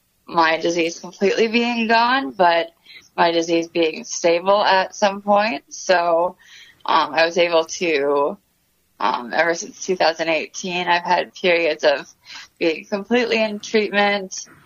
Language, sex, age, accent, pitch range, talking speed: English, female, 20-39, American, 165-195 Hz, 125 wpm